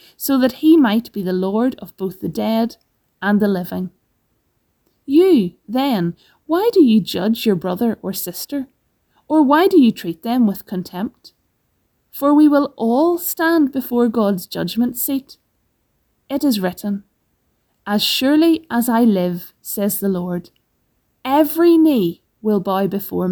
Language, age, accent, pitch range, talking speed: English, 30-49, Irish, 195-285 Hz, 145 wpm